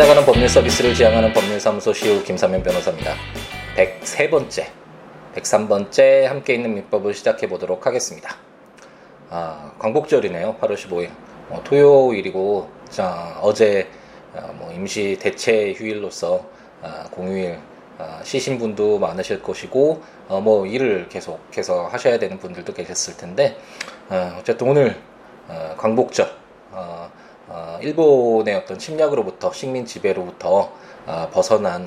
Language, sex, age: Korean, male, 20-39